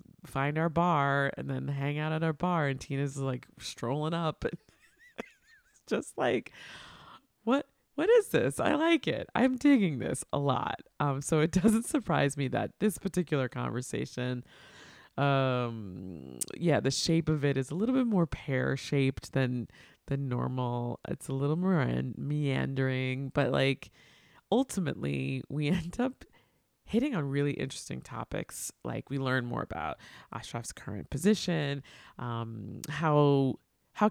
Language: English